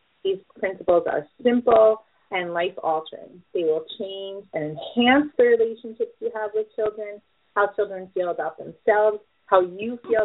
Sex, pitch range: female, 170-225 Hz